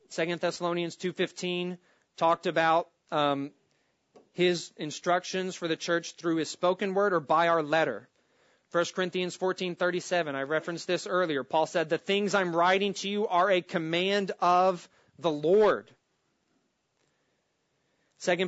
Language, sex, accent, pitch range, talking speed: English, male, American, 150-185 Hz, 135 wpm